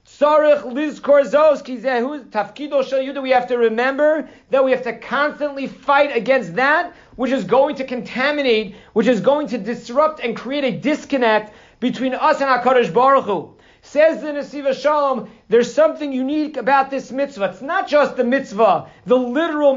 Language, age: English, 40-59